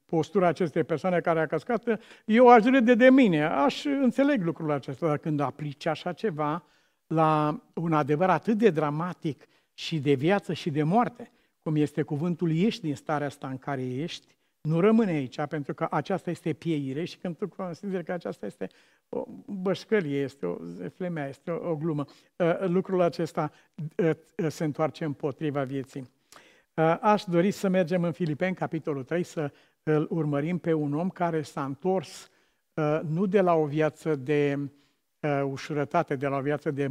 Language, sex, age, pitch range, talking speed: Romanian, male, 60-79, 145-175 Hz, 160 wpm